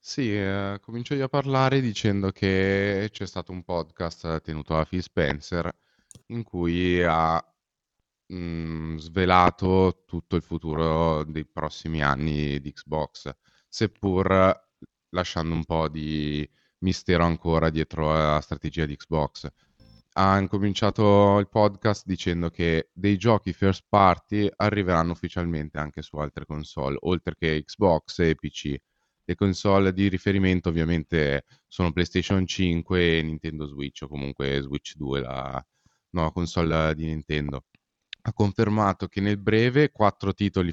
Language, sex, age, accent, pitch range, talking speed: Italian, male, 20-39, native, 80-95 Hz, 130 wpm